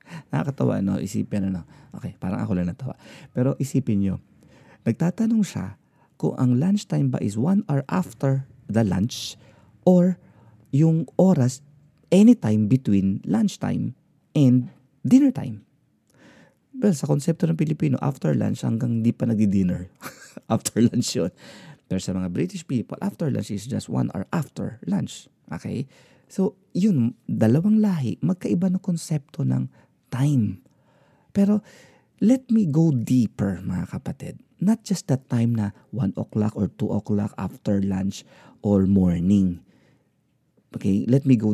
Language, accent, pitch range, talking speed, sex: Filipino, native, 105-160 Hz, 135 wpm, male